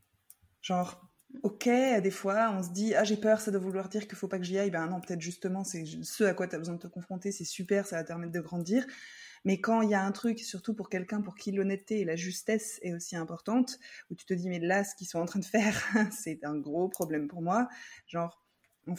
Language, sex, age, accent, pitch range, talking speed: French, female, 20-39, French, 180-220 Hz, 260 wpm